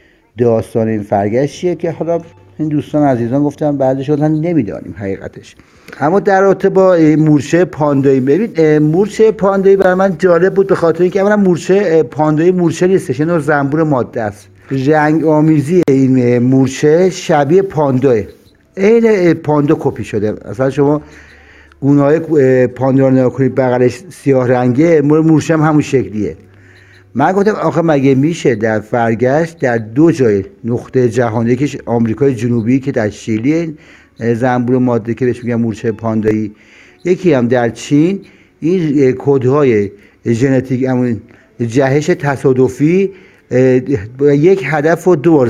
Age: 60-79